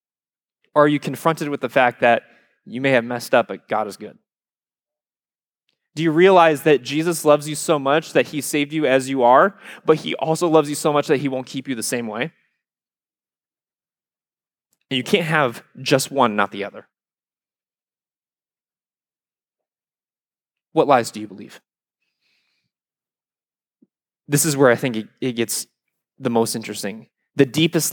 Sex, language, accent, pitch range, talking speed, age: male, English, American, 130-170 Hz, 155 wpm, 20-39